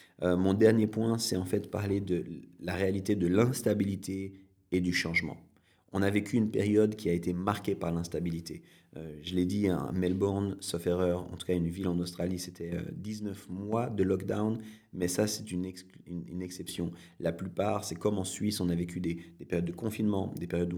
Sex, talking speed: male, 195 wpm